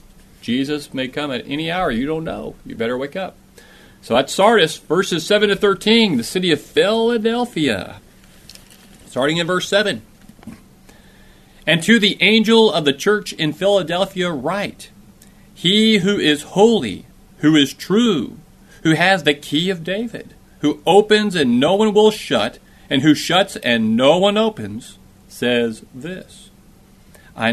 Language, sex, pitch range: English, male, 150-210 Hz